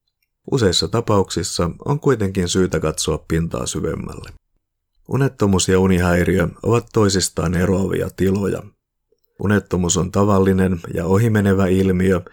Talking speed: 100 wpm